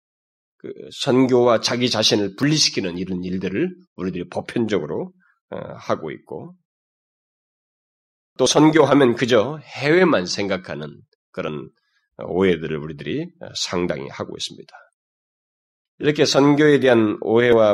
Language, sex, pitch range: Korean, male, 100-160 Hz